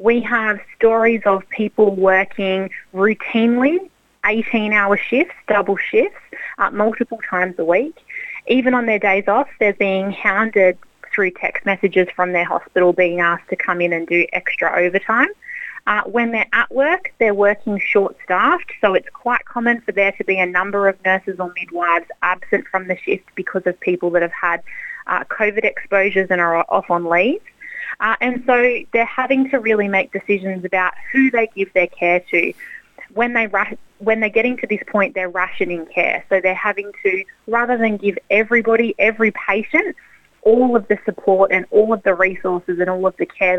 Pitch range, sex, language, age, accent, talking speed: 185-230 Hz, female, Malayalam, 30-49, Australian, 180 wpm